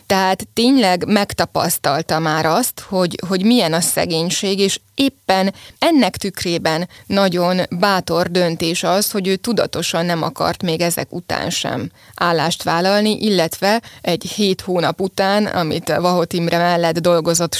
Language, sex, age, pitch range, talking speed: Hungarian, female, 20-39, 170-200 Hz, 135 wpm